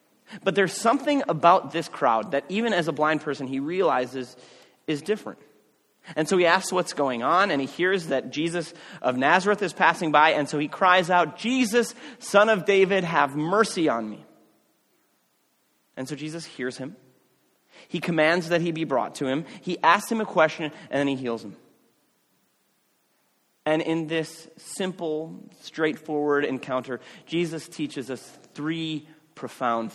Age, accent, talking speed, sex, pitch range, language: 30-49, American, 160 wpm, male, 145-195 Hz, English